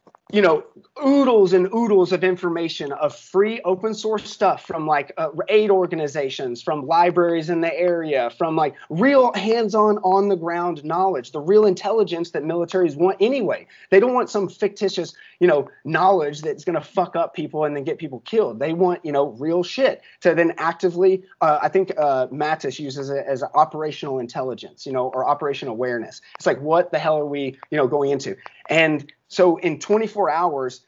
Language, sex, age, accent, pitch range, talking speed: English, male, 30-49, American, 165-210 Hz, 190 wpm